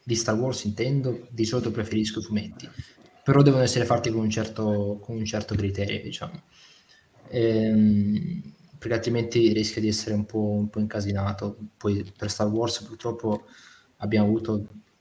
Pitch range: 105-115 Hz